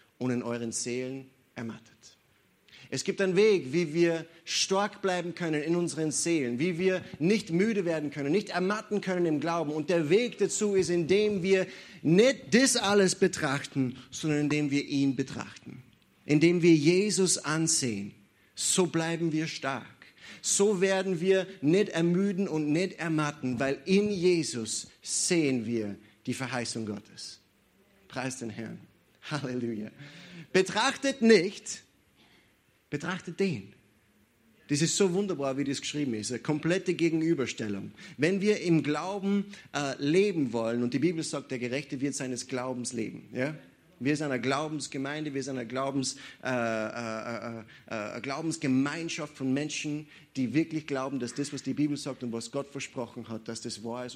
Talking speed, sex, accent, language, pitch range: 150 wpm, male, German, German, 125-180 Hz